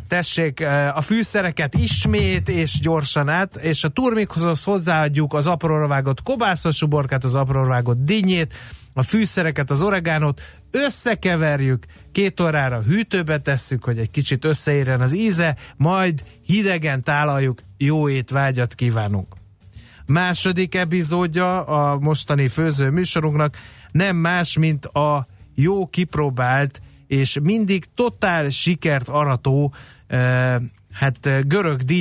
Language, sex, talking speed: Hungarian, male, 110 wpm